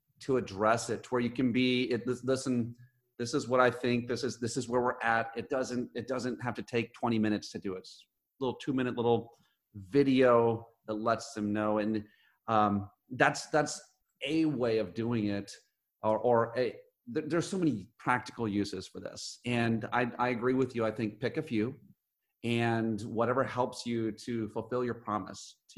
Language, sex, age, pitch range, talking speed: English, male, 30-49, 110-135 Hz, 200 wpm